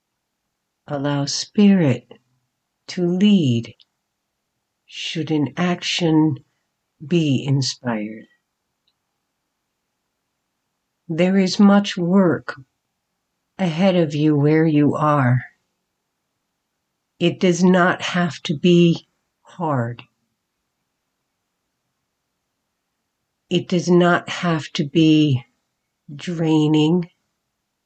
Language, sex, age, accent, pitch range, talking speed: English, female, 60-79, American, 145-190 Hz, 70 wpm